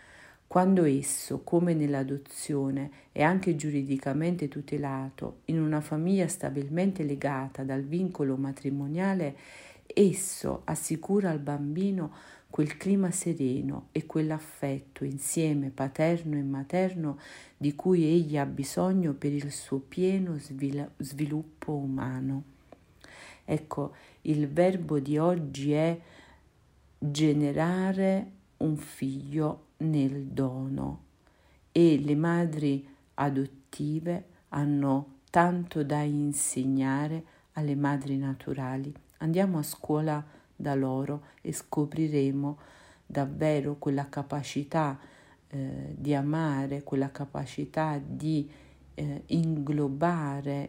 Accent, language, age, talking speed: native, Italian, 50-69, 95 wpm